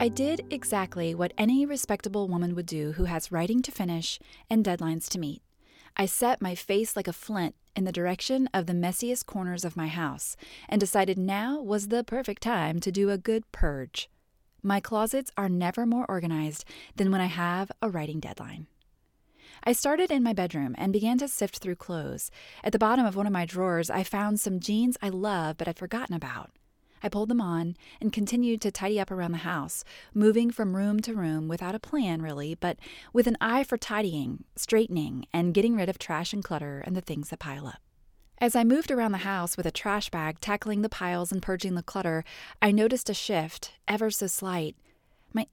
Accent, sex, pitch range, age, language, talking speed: American, female, 175-220 Hz, 30-49, English, 205 wpm